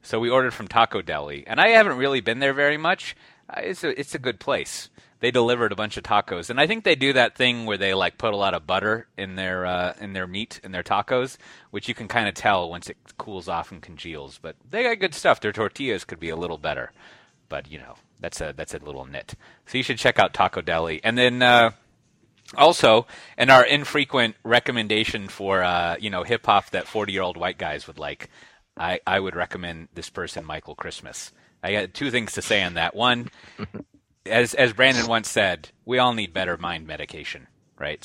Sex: male